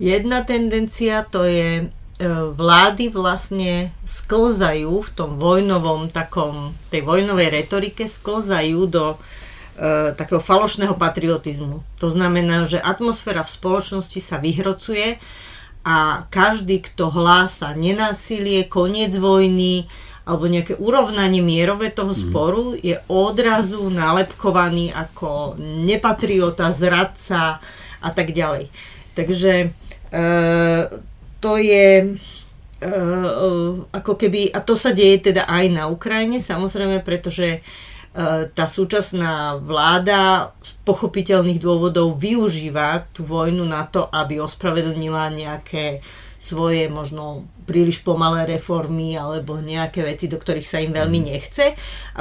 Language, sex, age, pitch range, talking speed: Slovak, female, 40-59, 160-190 Hz, 110 wpm